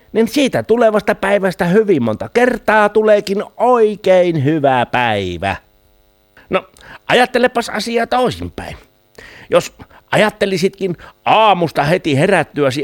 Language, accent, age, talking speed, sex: Finnish, native, 60-79, 95 wpm, male